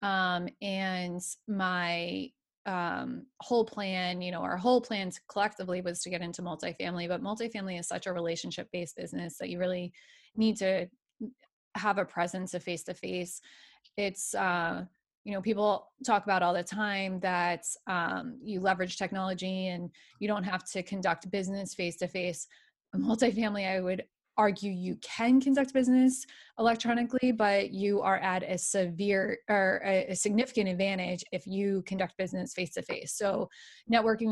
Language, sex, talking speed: English, female, 145 wpm